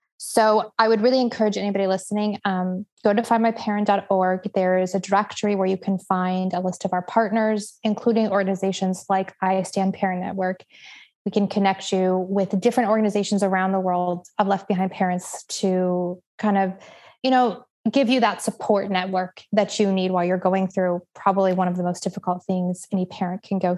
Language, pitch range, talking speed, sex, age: English, 190-215 Hz, 185 wpm, female, 20-39